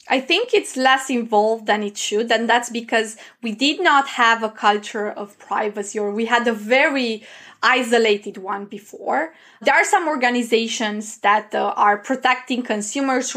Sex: female